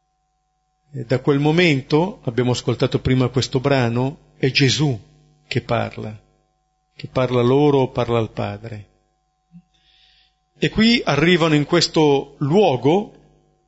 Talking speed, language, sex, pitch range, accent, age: 105 wpm, Italian, male, 130-155 Hz, native, 50-69